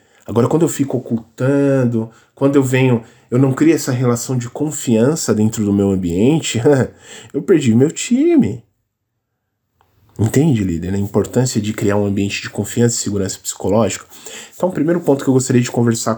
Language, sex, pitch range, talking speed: Portuguese, male, 110-140 Hz, 165 wpm